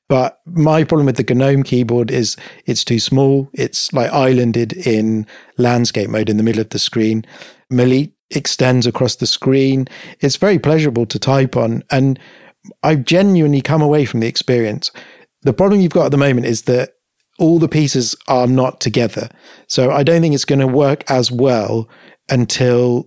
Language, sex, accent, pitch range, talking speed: English, male, British, 120-140 Hz, 175 wpm